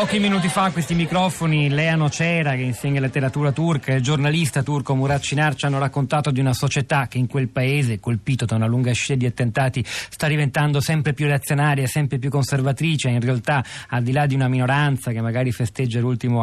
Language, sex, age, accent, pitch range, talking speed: Italian, male, 40-59, native, 120-140 Hz, 195 wpm